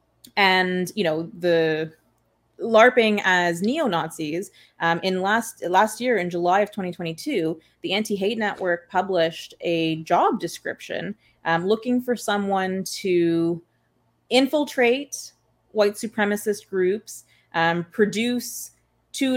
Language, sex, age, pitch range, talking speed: English, female, 30-49, 170-210 Hz, 110 wpm